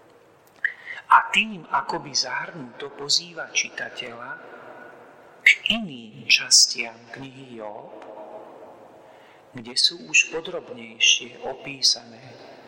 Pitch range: 125-145 Hz